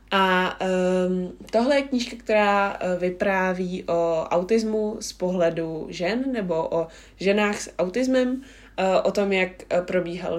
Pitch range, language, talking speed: 185-215 Hz, Czech, 140 wpm